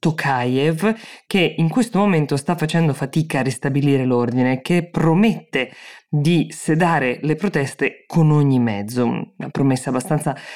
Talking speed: 125 wpm